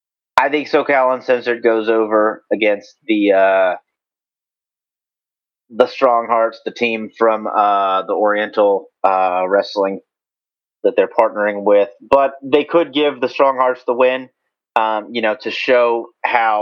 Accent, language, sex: American, English, male